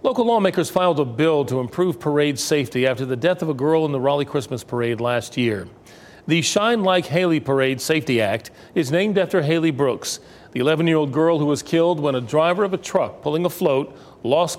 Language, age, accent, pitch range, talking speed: English, 40-59, American, 140-185 Hz, 205 wpm